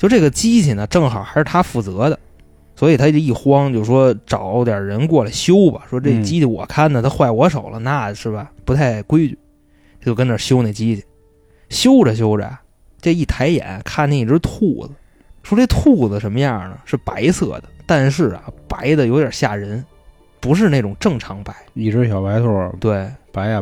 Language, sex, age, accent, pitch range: Chinese, male, 20-39, native, 105-145 Hz